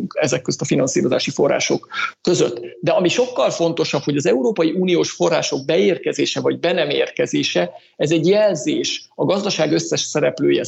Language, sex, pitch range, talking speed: Hungarian, male, 155-215 Hz, 150 wpm